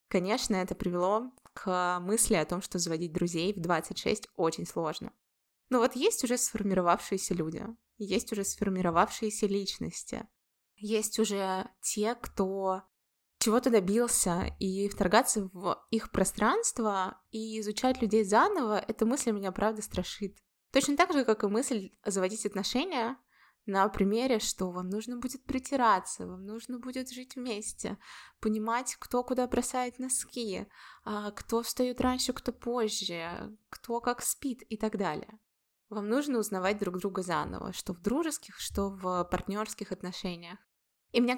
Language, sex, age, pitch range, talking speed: Russian, female, 20-39, 195-245 Hz, 140 wpm